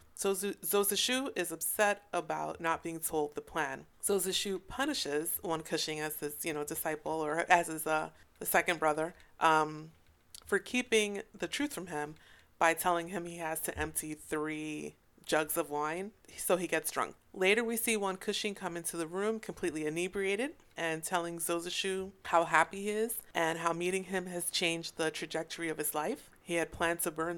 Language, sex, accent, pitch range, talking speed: English, female, American, 160-195 Hz, 180 wpm